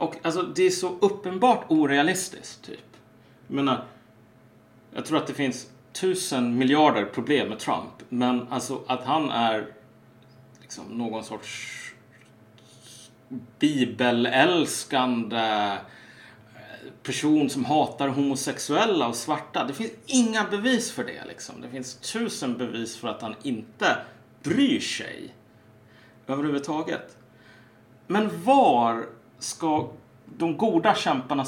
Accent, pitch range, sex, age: Norwegian, 110-155 Hz, male, 30-49